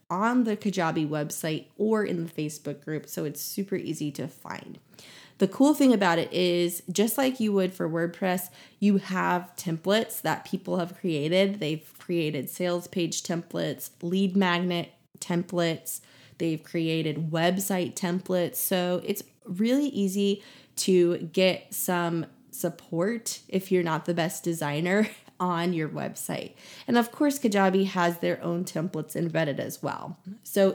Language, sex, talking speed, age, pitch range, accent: English, female, 145 wpm, 20-39, 165-200 Hz, American